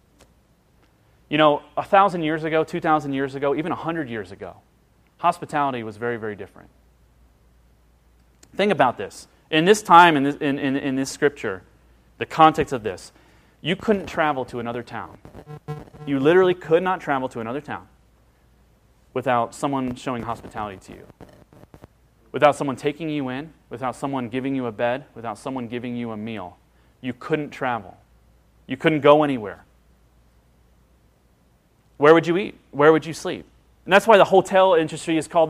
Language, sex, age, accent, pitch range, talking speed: English, male, 30-49, American, 120-190 Hz, 165 wpm